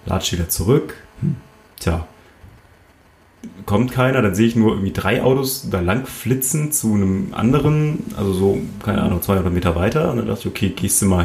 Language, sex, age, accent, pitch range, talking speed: German, male, 30-49, German, 95-125 Hz, 185 wpm